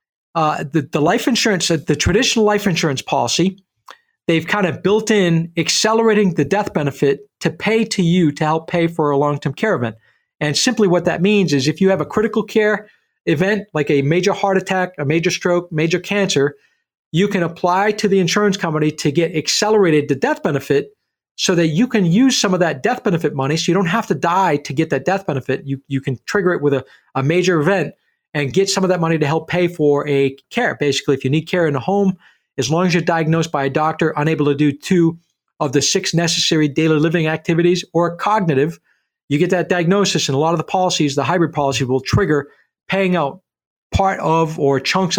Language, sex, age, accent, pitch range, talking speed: English, male, 40-59, American, 150-195 Hz, 215 wpm